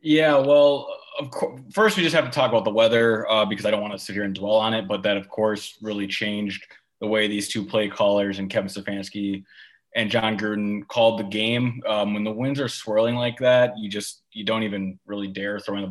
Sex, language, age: male, English, 20-39